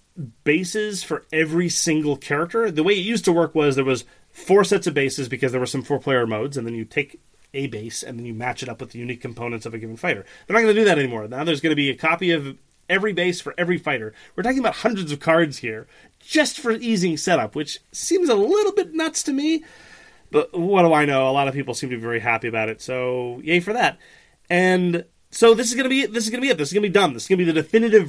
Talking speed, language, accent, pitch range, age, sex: 270 wpm, English, American, 125-175 Hz, 30-49, male